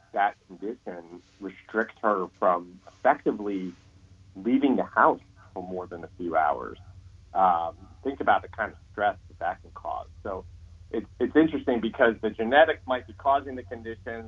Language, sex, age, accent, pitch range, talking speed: English, male, 40-59, American, 95-120 Hz, 160 wpm